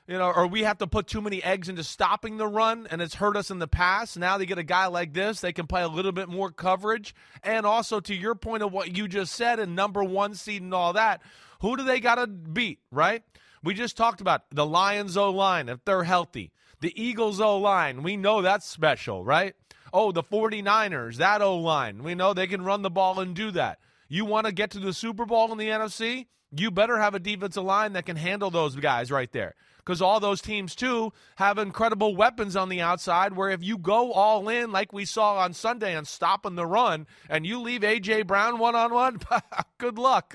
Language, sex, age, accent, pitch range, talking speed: English, male, 30-49, American, 170-215 Hz, 225 wpm